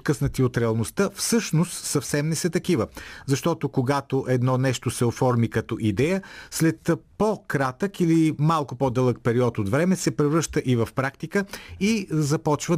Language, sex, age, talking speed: Bulgarian, male, 40-59, 145 wpm